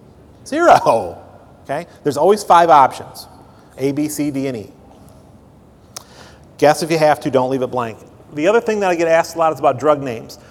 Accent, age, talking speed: American, 40-59, 195 wpm